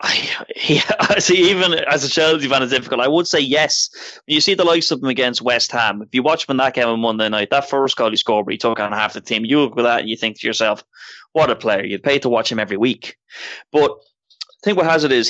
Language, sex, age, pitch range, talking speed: English, male, 20-39, 115-140 Hz, 280 wpm